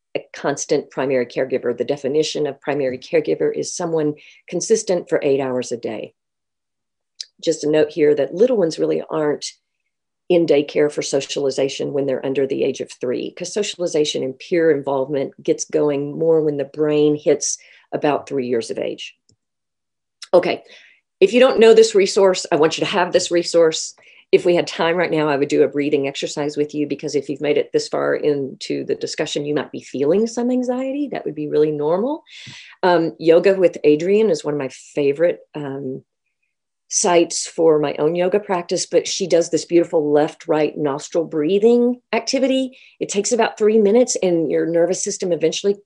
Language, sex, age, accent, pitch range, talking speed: English, female, 50-69, American, 150-210 Hz, 180 wpm